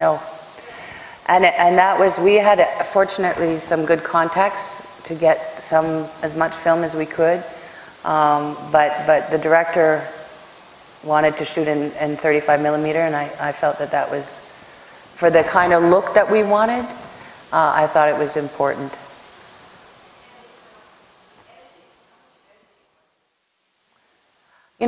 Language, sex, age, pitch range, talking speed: English, female, 40-59, 150-175 Hz, 135 wpm